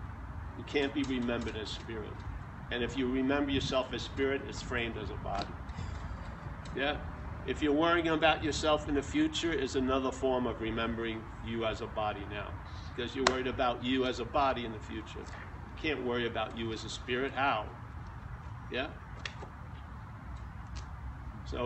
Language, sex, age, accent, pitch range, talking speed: English, male, 50-69, American, 100-140 Hz, 165 wpm